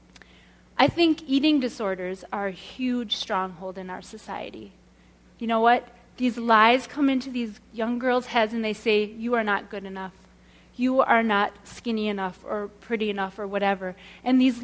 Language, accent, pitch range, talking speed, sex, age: English, American, 215-275 Hz, 170 wpm, female, 30-49